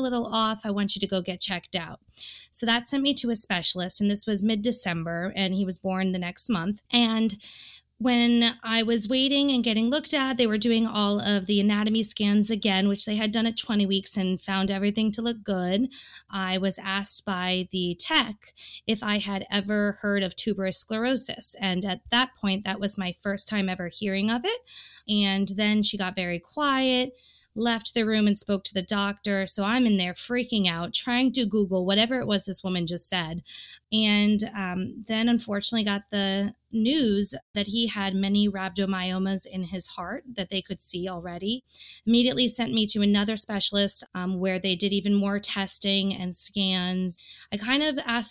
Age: 20-39